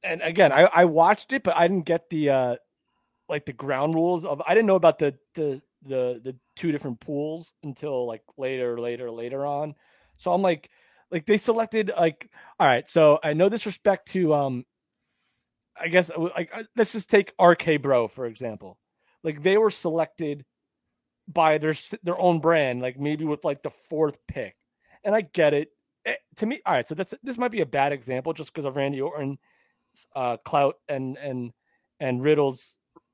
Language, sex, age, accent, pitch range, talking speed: English, male, 30-49, American, 140-190 Hz, 185 wpm